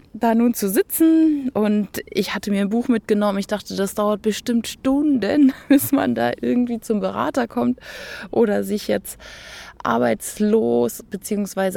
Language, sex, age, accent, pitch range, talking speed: German, female, 20-39, German, 190-255 Hz, 150 wpm